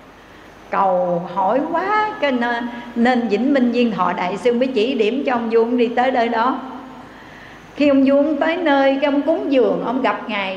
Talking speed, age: 180 wpm, 60-79